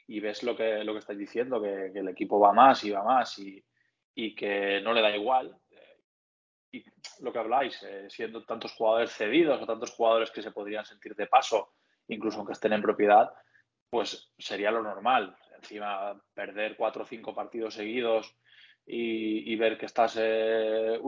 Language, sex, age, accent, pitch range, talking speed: Spanish, male, 20-39, Spanish, 105-115 Hz, 180 wpm